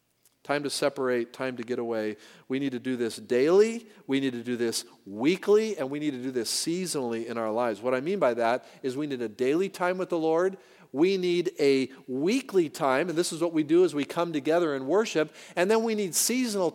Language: English